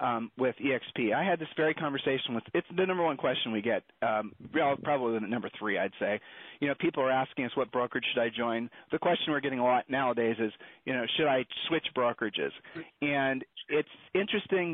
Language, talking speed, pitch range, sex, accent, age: English, 215 wpm, 130-160 Hz, male, American, 40-59